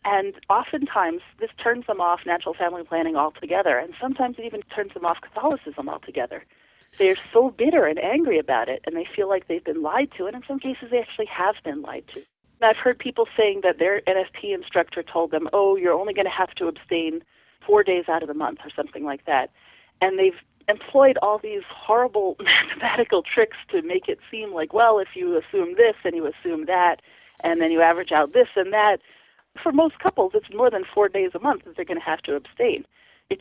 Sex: female